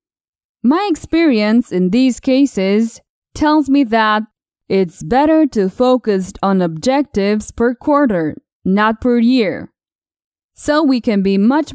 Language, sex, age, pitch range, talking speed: English, female, 20-39, 205-280 Hz, 125 wpm